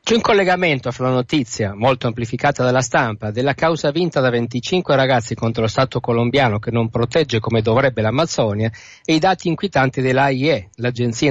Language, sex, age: Italian, male, 50-69